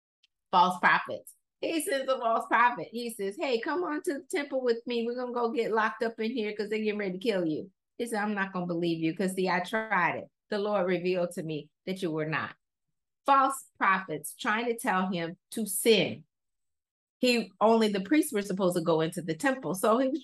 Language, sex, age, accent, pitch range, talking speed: English, female, 30-49, American, 175-230 Hz, 220 wpm